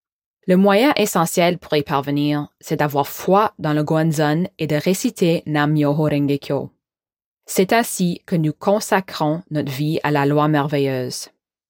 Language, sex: English, female